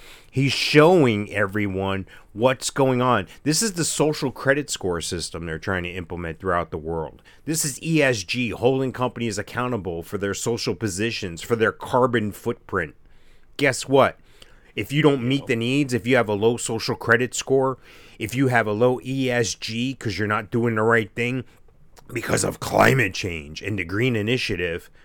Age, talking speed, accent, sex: 30-49, 170 wpm, American, male